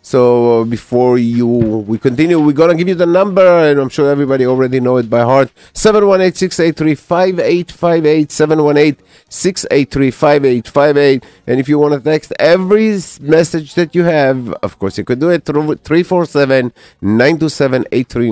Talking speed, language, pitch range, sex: 205 wpm, English, 105-150 Hz, male